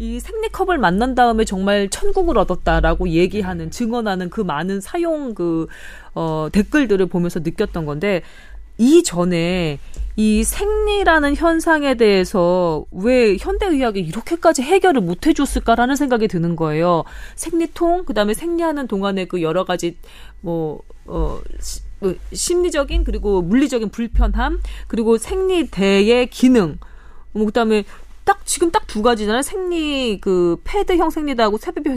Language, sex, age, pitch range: Korean, female, 30-49, 195-300 Hz